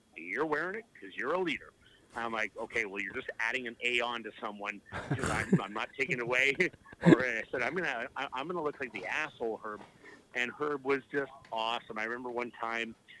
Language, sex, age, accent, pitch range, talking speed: English, male, 40-59, American, 115-140 Hz, 210 wpm